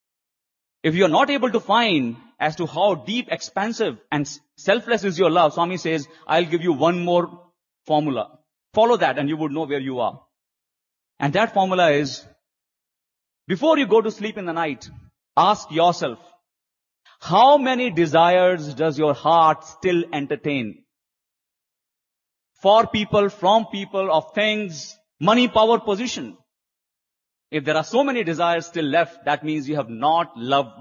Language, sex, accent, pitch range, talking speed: English, male, Indian, 150-210 Hz, 155 wpm